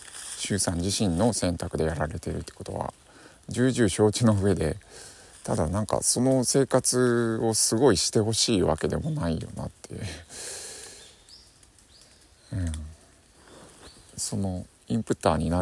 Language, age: Japanese, 50-69